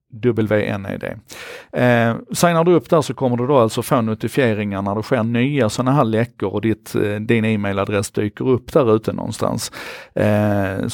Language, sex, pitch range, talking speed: Swedish, male, 105-130 Hz, 165 wpm